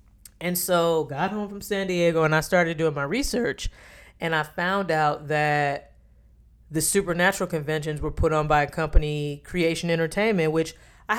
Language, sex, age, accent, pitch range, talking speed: English, female, 20-39, American, 150-175 Hz, 165 wpm